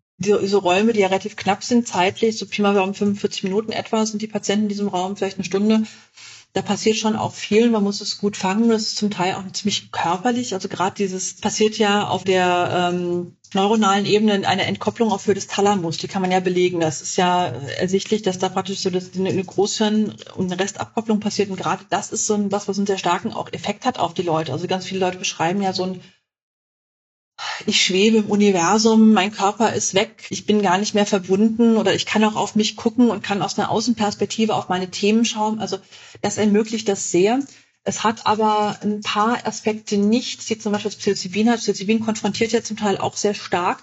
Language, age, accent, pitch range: English, 40-59, German, 190-220 Hz